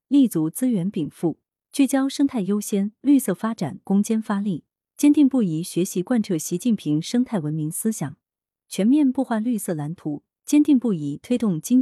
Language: Chinese